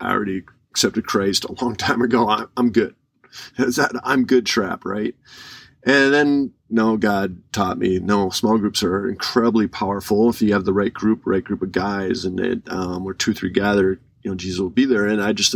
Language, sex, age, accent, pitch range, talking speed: English, male, 40-59, American, 105-125 Hz, 210 wpm